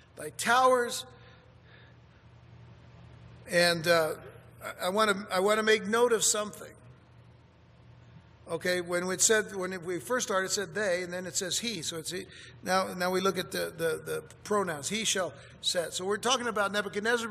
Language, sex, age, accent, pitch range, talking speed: English, male, 60-79, American, 180-225 Hz, 175 wpm